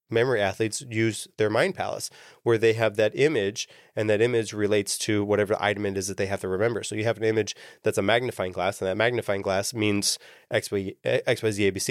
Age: 20-39